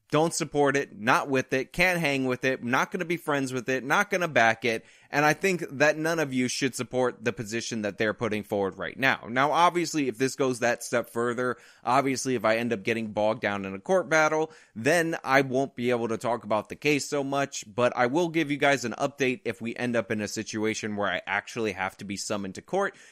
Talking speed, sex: 245 wpm, male